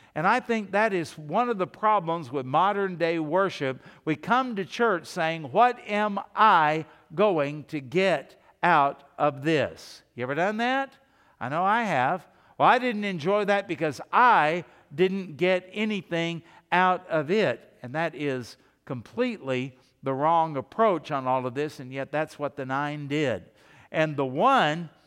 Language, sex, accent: English, male, American